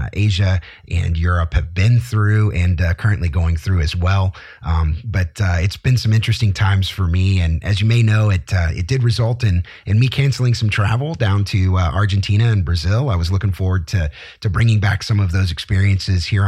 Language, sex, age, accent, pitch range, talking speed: English, male, 30-49, American, 90-110 Hz, 210 wpm